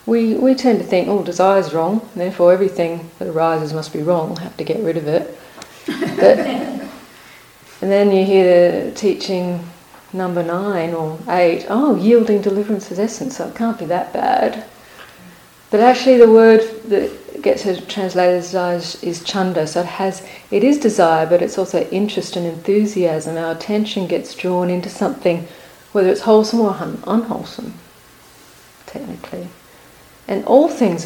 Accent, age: Australian, 40-59